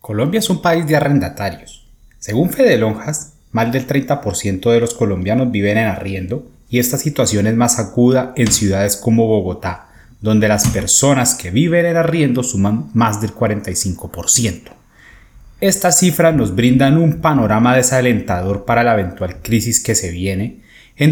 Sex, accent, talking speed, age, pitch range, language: male, Colombian, 150 wpm, 30-49, 105-130 Hz, Spanish